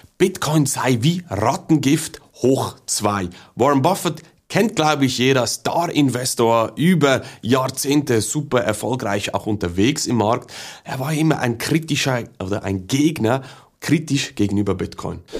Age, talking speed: 30-49, 130 wpm